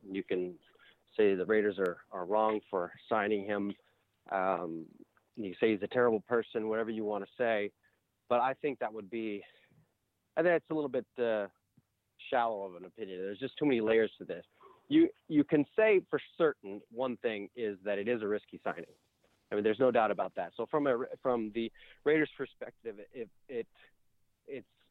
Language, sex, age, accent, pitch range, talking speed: English, male, 30-49, American, 105-130 Hz, 190 wpm